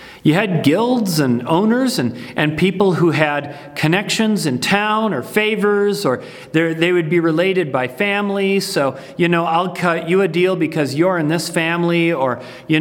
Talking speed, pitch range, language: 175 wpm, 145-200 Hz, English